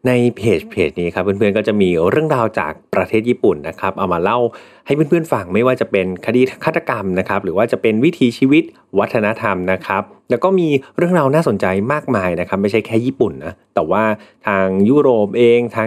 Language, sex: Thai, male